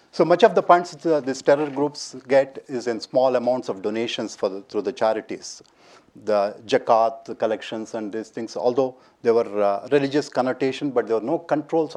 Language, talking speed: English, 195 wpm